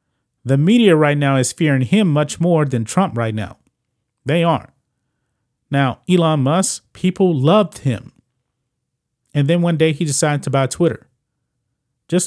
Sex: male